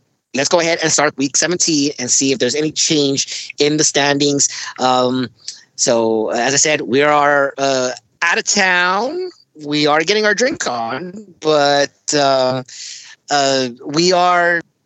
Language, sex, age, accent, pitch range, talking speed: English, male, 30-49, American, 140-190 Hz, 140 wpm